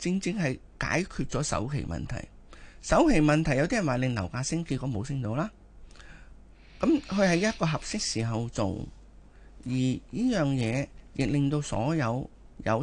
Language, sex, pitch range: Chinese, male, 115-160 Hz